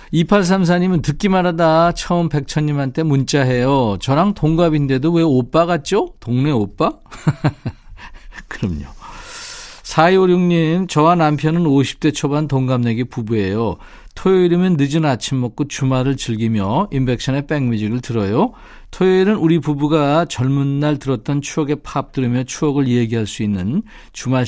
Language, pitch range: Korean, 120-165 Hz